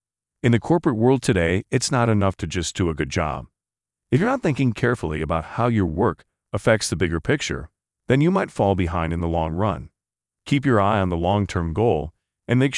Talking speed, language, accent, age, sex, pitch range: 210 wpm, English, American, 40-59, male, 85-115 Hz